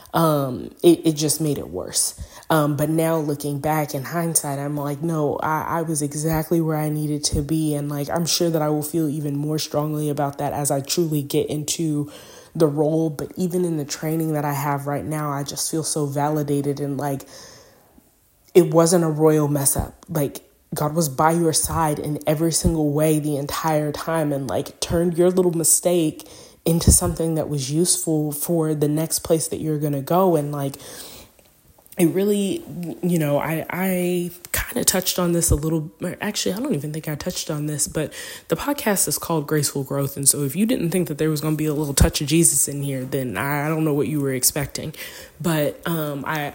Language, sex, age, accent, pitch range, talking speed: English, female, 20-39, American, 145-165 Hz, 210 wpm